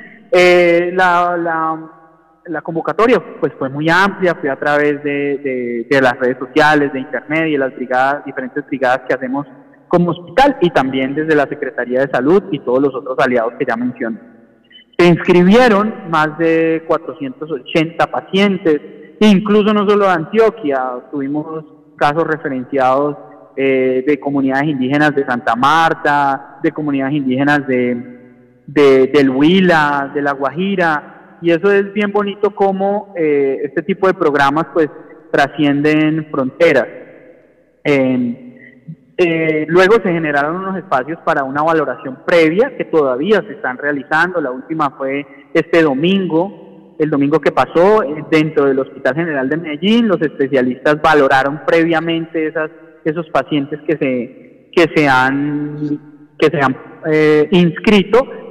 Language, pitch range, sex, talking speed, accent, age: Spanish, 140-170 Hz, male, 140 wpm, Colombian, 30-49